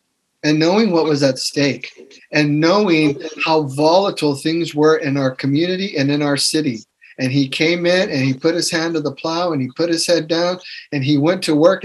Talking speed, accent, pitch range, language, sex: 215 wpm, American, 145-170 Hz, English, male